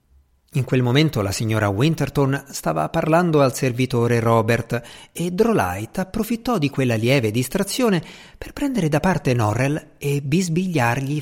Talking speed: 135 wpm